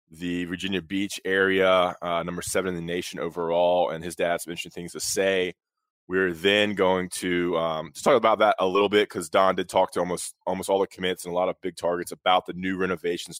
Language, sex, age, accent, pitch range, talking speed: English, male, 20-39, American, 90-105 Hz, 225 wpm